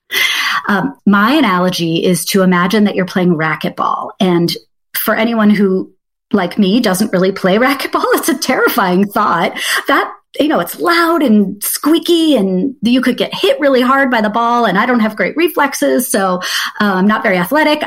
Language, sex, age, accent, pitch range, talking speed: English, female, 30-49, American, 190-260 Hz, 175 wpm